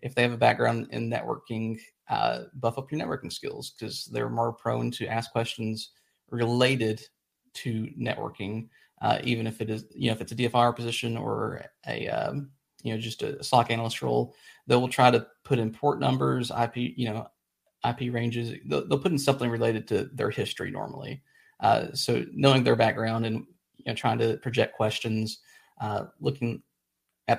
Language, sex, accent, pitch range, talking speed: English, male, American, 115-130 Hz, 175 wpm